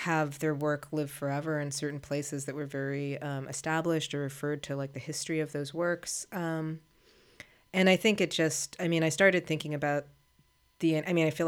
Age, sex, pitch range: 30-49, female, 145-165 Hz